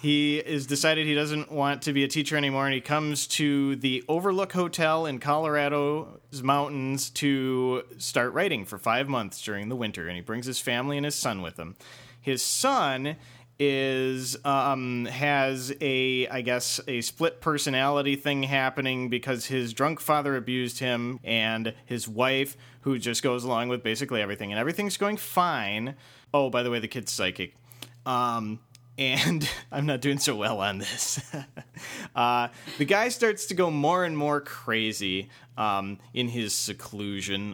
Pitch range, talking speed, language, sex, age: 115-145 Hz, 165 wpm, English, male, 30-49